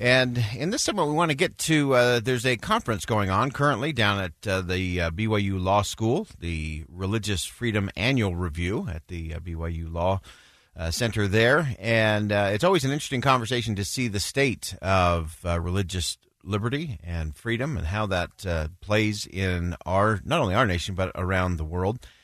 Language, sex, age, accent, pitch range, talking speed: English, male, 40-59, American, 90-115 Hz, 185 wpm